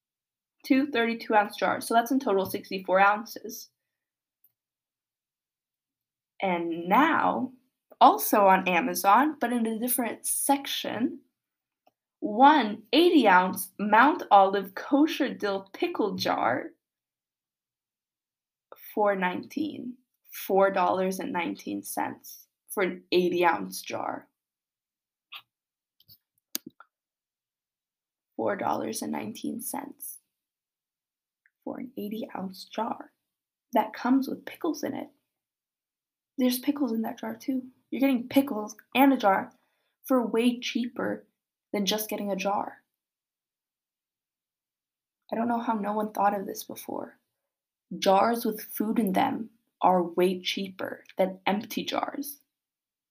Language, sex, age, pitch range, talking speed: English, female, 20-39, 205-275 Hz, 105 wpm